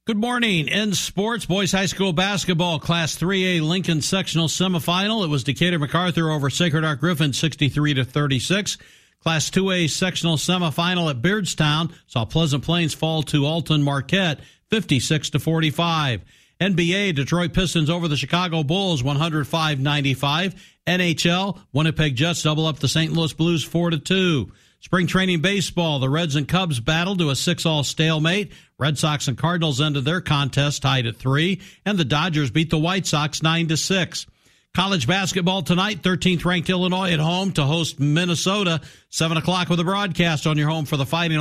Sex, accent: male, American